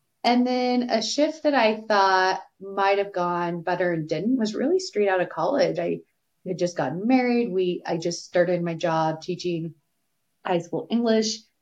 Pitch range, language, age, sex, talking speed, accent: 170-215 Hz, English, 20-39, female, 175 wpm, American